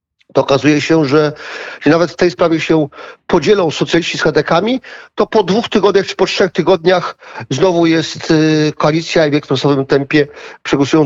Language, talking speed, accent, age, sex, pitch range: Polish, 170 wpm, native, 40-59, male, 150-180 Hz